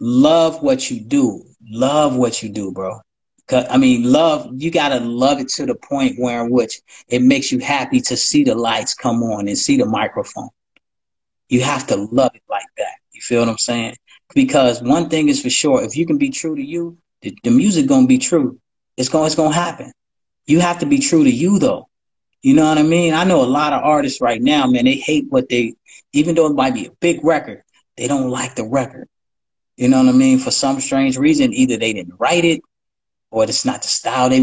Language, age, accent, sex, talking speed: English, 30-49, American, male, 230 wpm